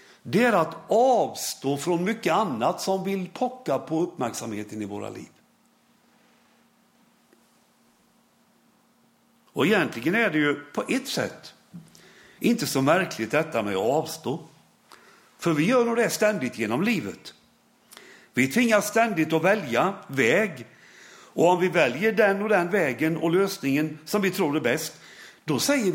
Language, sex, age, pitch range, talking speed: Swedish, male, 60-79, 150-230 Hz, 140 wpm